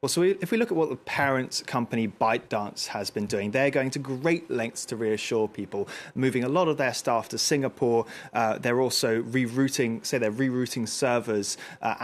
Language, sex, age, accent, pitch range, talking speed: English, male, 20-39, British, 105-130 Hz, 200 wpm